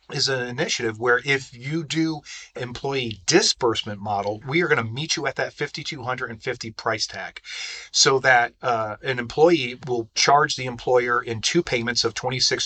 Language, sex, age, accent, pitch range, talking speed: English, male, 40-59, American, 115-145 Hz, 190 wpm